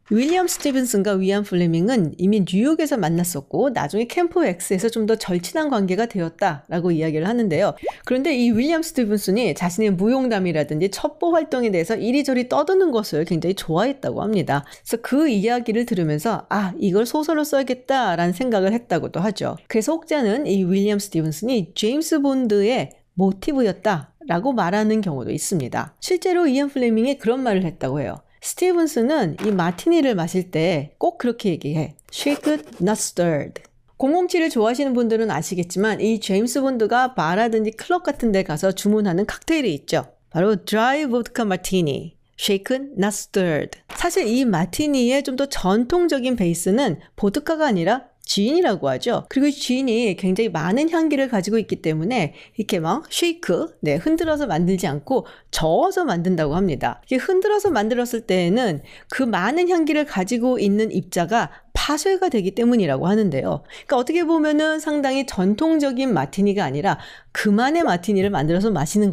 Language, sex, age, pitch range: Korean, female, 40-59, 185-275 Hz